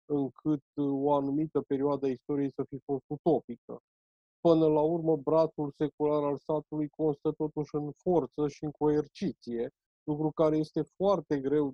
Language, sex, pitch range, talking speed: Romanian, male, 140-175 Hz, 150 wpm